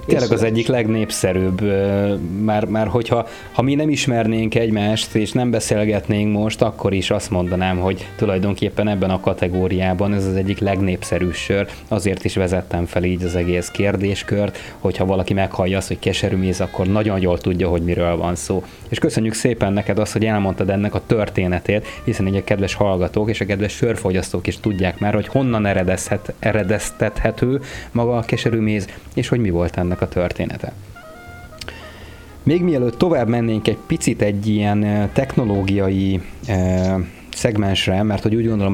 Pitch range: 95-110 Hz